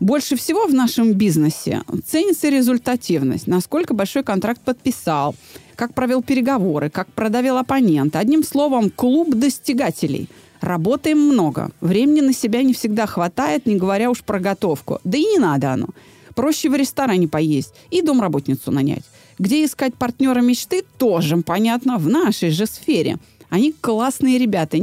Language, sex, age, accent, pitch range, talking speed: Russian, female, 30-49, native, 195-270 Hz, 145 wpm